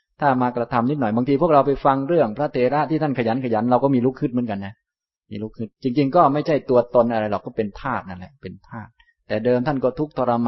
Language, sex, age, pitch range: Thai, male, 20-39, 110-140 Hz